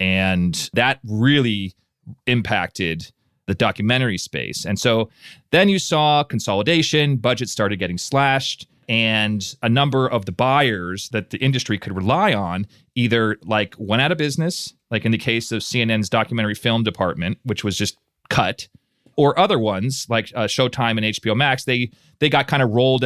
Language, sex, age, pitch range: English, male, 30-49, 100-130 Hz